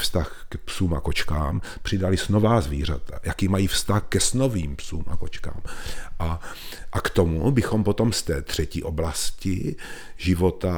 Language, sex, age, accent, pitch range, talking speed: Czech, male, 40-59, native, 80-100 Hz, 150 wpm